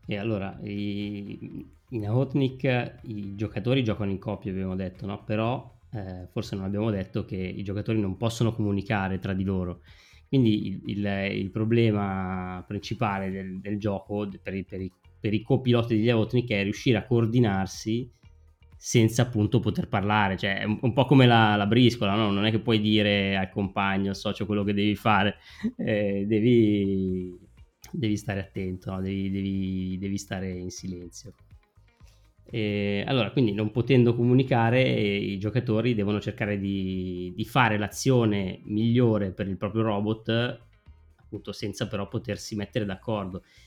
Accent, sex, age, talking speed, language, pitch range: native, male, 20-39, 155 wpm, Italian, 95-110 Hz